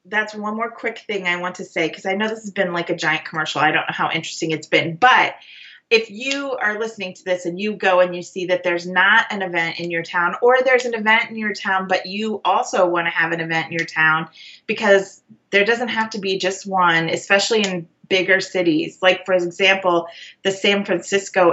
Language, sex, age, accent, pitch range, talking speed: English, female, 30-49, American, 165-200 Hz, 230 wpm